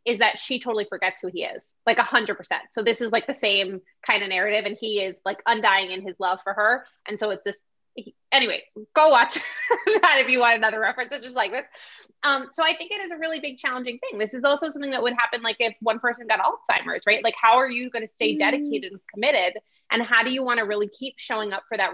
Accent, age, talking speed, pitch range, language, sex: American, 20-39, 260 wpm, 195-250 Hz, English, female